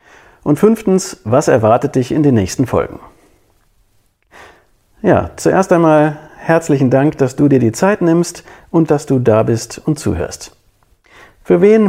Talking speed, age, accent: 145 wpm, 50-69, German